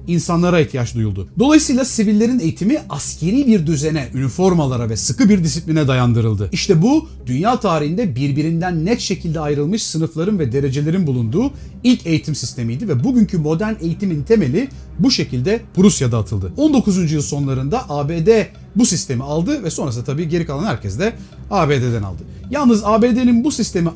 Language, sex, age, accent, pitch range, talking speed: Turkish, male, 40-59, native, 145-220 Hz, 150 wpm